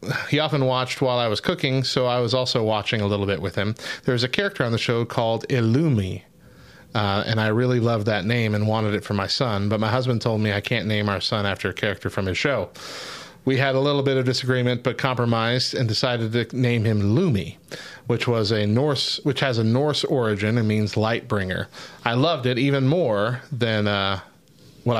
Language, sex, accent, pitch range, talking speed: English, male, American, 105-130 Hz, 220 wpm